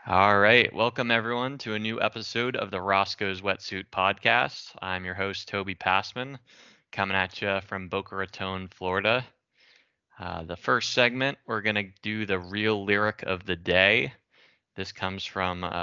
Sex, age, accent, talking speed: male, 20-39, American, 155 wpm